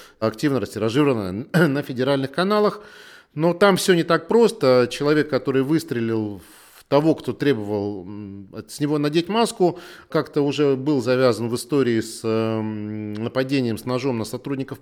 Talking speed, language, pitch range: 140 wpm, Russian, 110-145 Hz